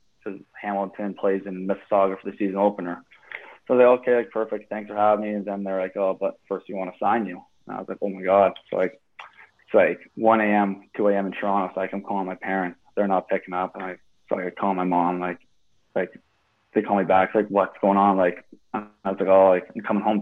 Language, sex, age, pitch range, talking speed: English, male, 20-39, 95-110 Hz, 245 wpm